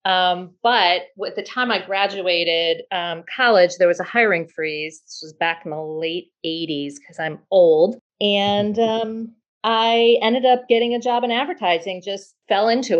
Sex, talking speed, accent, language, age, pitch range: female, 170 wpm, American, English, 40-59, 180-220 Hz